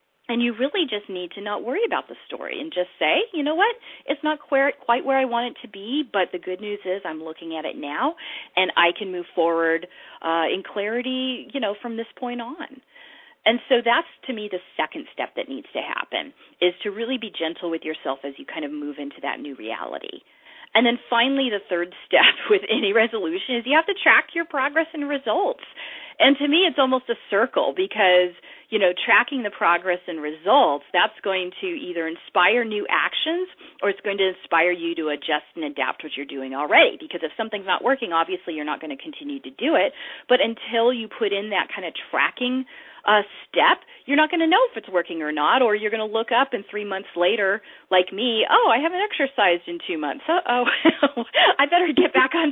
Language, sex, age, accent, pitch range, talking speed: English, female, 40-59, American, 170-275 Hz, 220 wpm